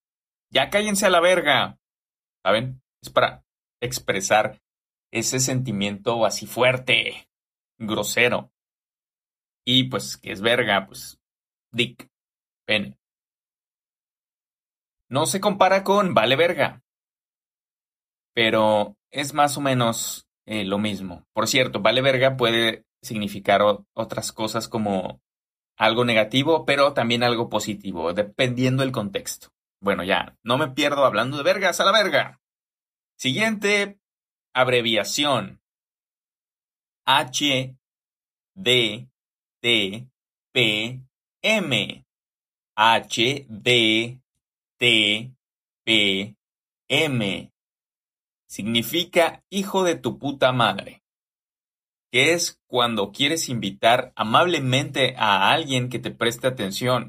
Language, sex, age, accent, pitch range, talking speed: English, male, 30-49, Mexican, 110-140 Hz, 90 wpm